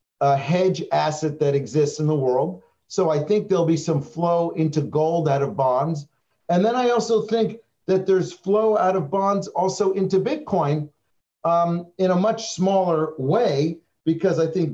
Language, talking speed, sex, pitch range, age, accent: English, 175 wpm, male, 140-170 Hz, 50-69, American